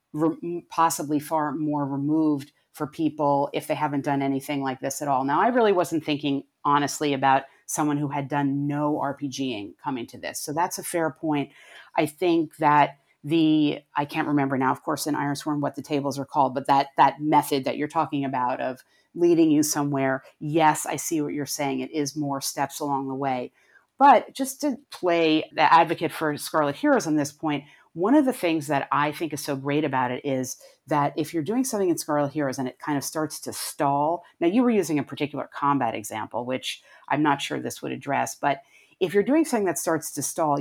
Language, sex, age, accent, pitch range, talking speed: English, female, 30-49, American, 140-165 Hz, 210 wpm